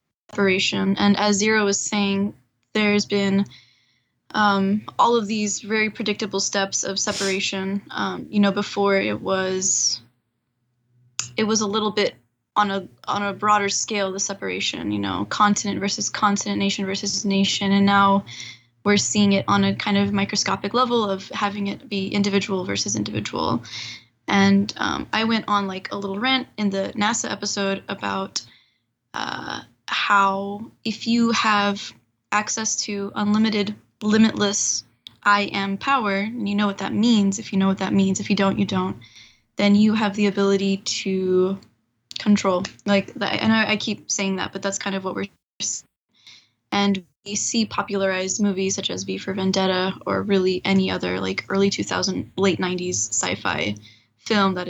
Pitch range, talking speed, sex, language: 185-205 Hz, 165 wpm, female, English